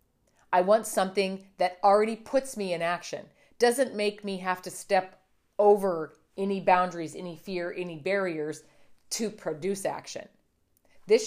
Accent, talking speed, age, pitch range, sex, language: American, 140 wpm, 40-59, 175-220 Hz, female, English